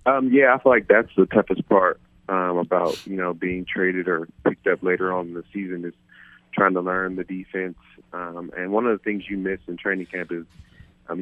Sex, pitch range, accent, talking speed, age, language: male, 85-95 Hz, American, 225 wpm, 30-49, English